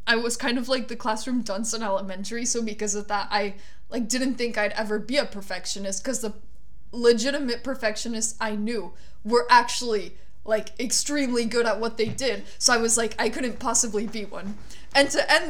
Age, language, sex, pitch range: 20-39, English, female, 205-240 Hz